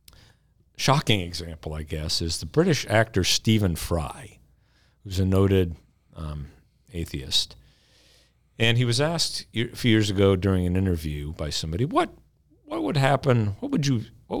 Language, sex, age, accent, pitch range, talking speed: English, male, 50-69, American, 85-115 Hz, 150 wpm